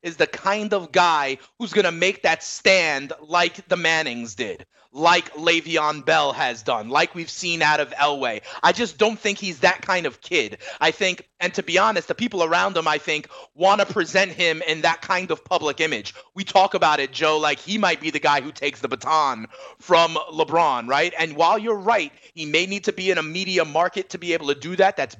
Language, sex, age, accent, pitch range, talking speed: English, male, 30-49, American, 150-185 Hz, 225 wpm